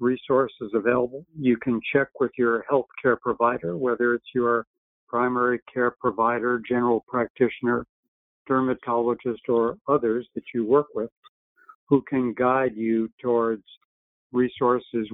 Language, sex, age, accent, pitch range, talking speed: English, male, 60-79, American, 115-130 Hz, 125 wpm